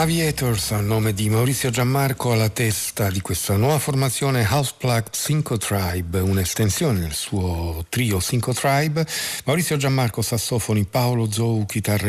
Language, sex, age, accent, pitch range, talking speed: Italian, male, 50-69, native, 95-115 Hz, 140 wpm